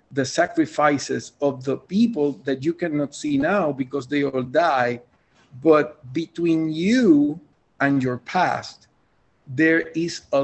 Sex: male